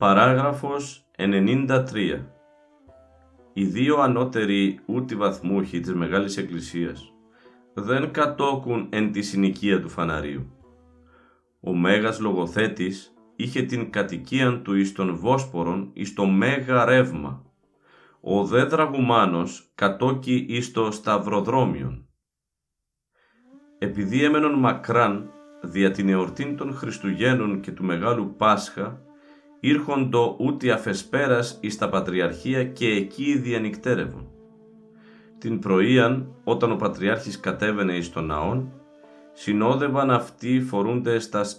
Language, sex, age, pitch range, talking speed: Greek, male, 50-69, 95-130 Hz, 105 wpm